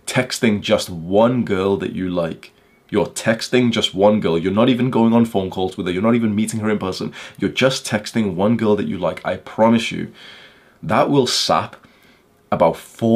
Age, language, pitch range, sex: 20-39, English, 100-125 Hz, male